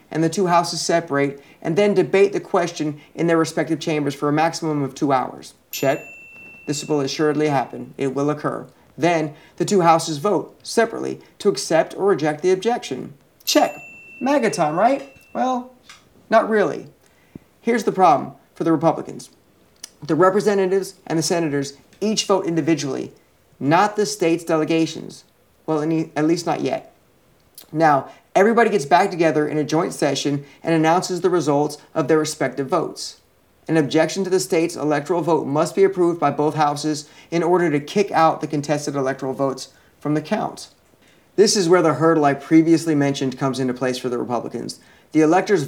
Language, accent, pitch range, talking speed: English, American, 145-180 Hz, 170 wpm